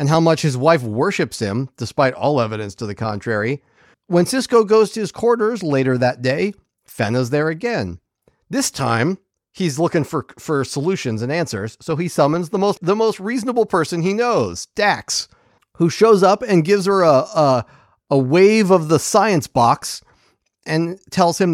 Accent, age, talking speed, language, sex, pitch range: American, 40-59, 175 wpm, English, male, 135-195 Hz